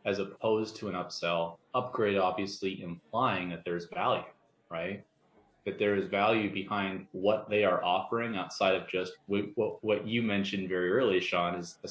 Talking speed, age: 160 wpm, 30-49